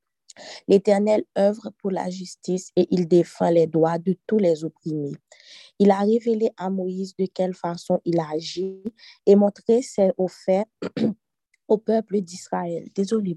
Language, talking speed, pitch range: French, 145 wpm, 175-210 Hz